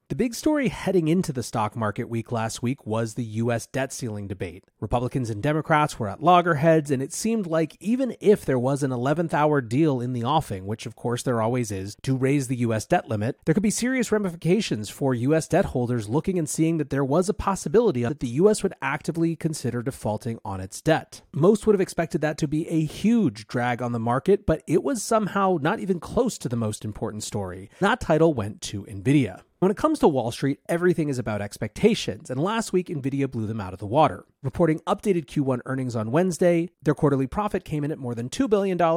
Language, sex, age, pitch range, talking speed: English, male, 30-49, 120-175 Hz, 220 wpm